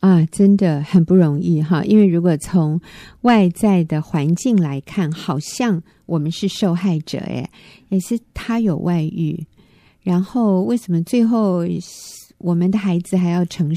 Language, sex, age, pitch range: Chinese, female, 50-69, 165-200 Hz